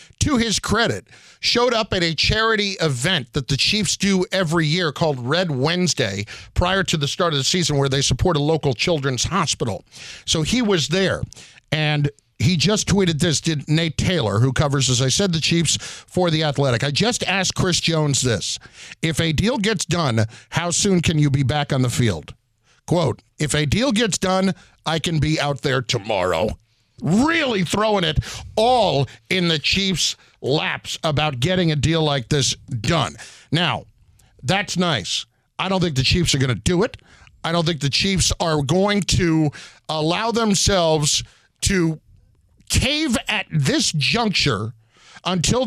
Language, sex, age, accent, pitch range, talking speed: English, male, 50-69, American, 135-185 Hz, 170 wpm